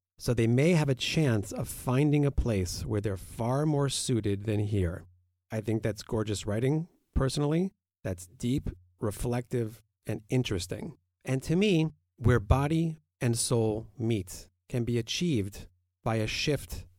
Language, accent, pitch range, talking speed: English, American, 100-140 Hz, 150 wpm